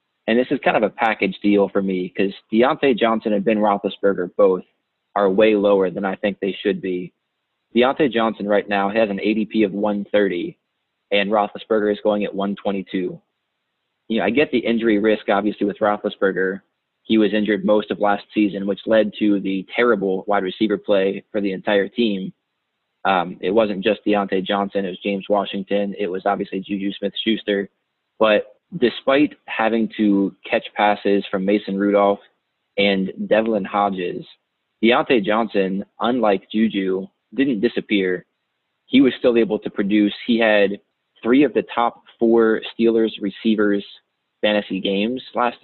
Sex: male